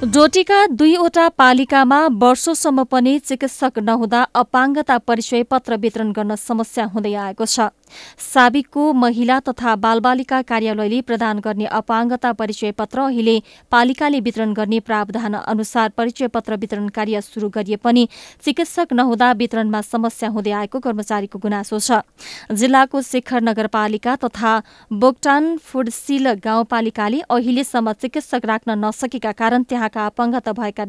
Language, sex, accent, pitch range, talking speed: English, female, Indian, 220-260 Hz, 90 wpm